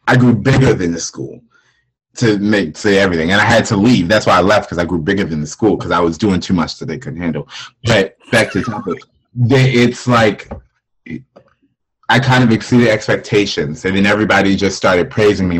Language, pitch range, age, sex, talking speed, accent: English, 100-130 Hz, 30-49, male, 215 wpm, American